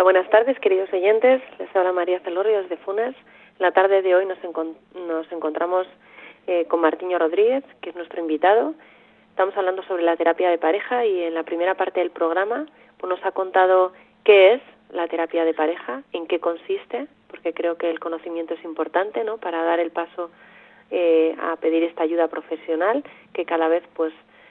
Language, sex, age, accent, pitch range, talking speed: Spanish, female, 30-49, Spanish, 170-195 Hz, 185 wpm